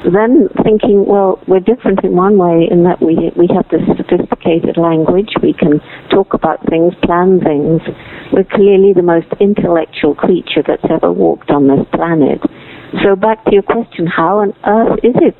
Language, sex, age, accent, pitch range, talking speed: English, female, 60-79, British, 155-195 Hz, 175 wpm